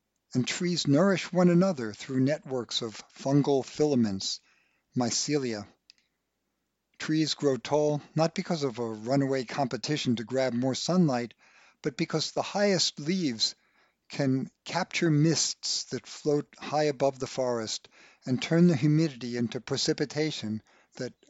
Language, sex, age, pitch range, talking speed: English, male, 50-69, 130-160 Hz, 125 wpm